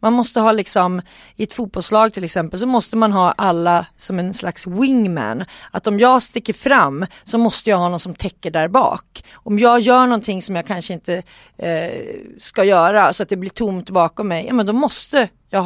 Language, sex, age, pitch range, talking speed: Swedish, female, 30-49, 175-230 Hz, 210 wpm